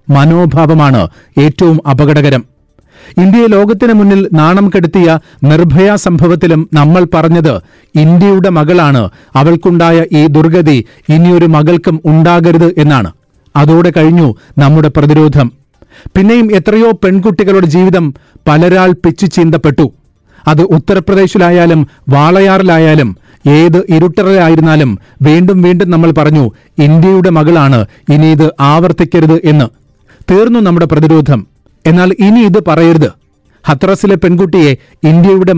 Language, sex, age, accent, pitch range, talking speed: Malayalam, male, 40-59, native, 150-185 Hz, 95 wpm